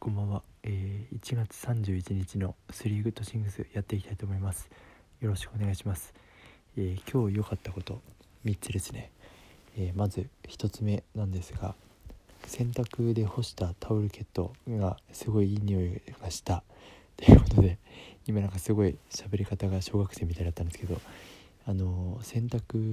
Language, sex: Japanese, male